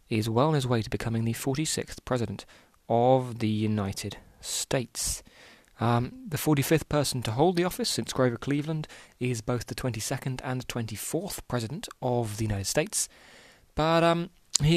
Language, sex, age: English, male, 20-39